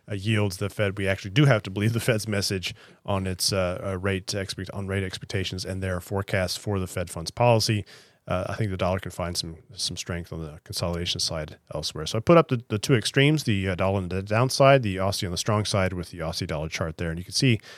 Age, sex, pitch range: 30-49, male, 90-110 Hz